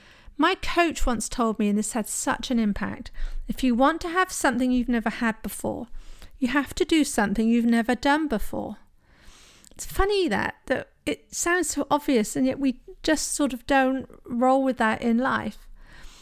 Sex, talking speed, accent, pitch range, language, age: female, 185 wpm, British, 230-310 Hz, English, 40-59